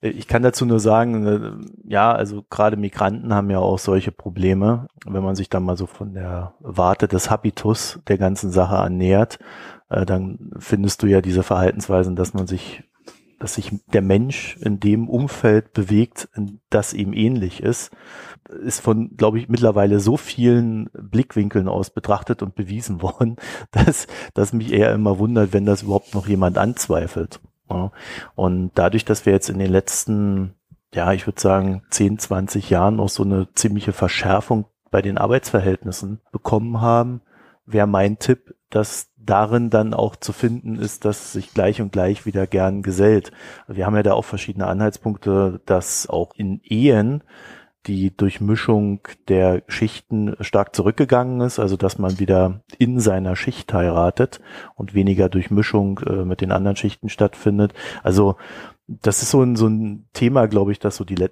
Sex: male